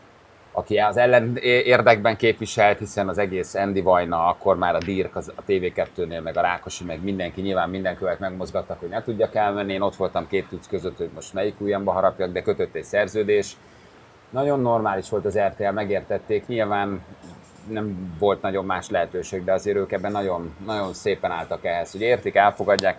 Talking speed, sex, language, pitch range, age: 175 wpm, male, Hungarian, 95-115 Hz, 30-49